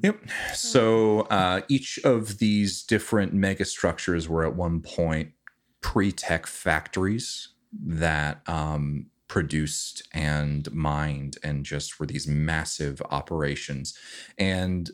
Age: 30-49